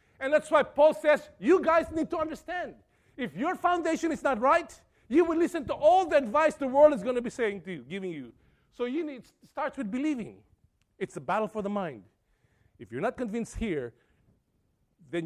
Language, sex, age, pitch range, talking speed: English, male, 50-69, 155-250 Hz, 205 wpm